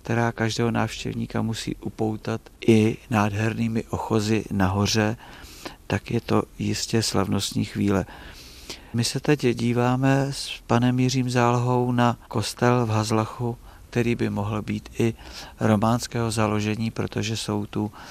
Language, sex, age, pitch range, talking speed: Czech, male, 50-69, 100-120 Hz, 125 wpm